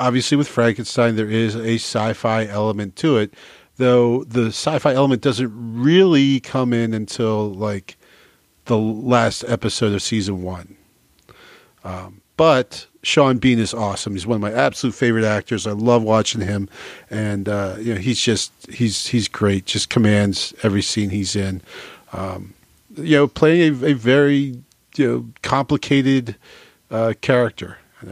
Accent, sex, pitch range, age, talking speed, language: American, male, 100-125 Hz, 40-59, 145 wpm, English